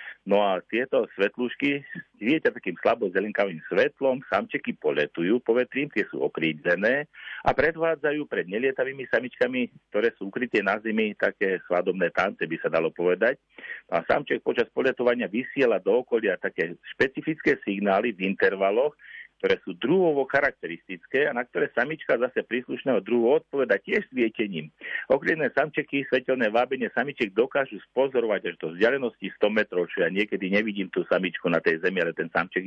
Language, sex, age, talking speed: Slovak, male, 50-69, 150 wpm